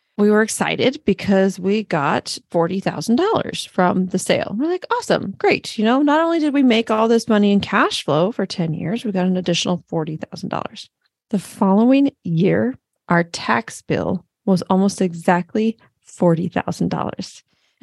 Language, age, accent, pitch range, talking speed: English, 30-49, American, 175-225 Hz, 150 wpm